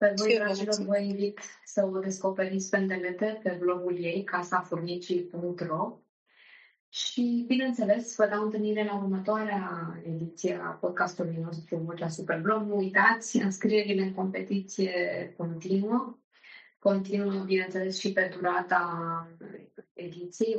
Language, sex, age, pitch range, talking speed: Romanian, female, 20-39, 165-210 Hz, 115 wpm